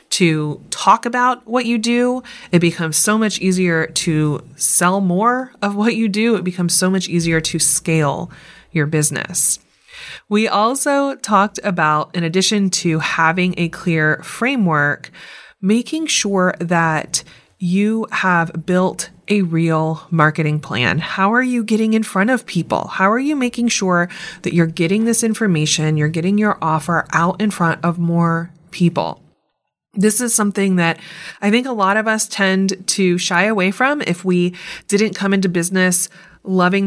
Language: English